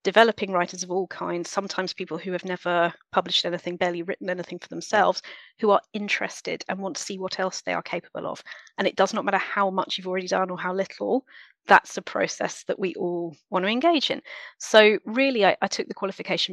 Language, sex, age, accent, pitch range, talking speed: English, female, 30-49, British, 180-215 Hz, 220 wpm